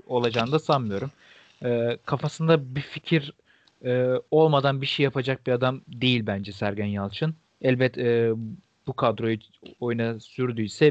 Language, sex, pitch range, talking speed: Turkish, male, 120-150 Hz, 130 wpm